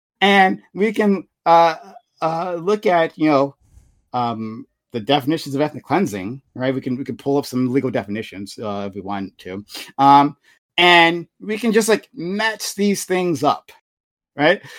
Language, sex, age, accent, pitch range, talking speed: English, male, 30-49, American, 125-175 Hz, 165 wpm